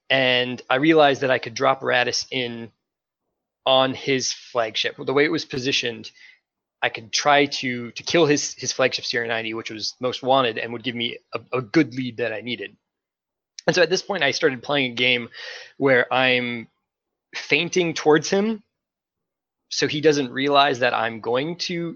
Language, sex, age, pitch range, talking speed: English, male, 20-39, 120-145 Hz, 180 wpm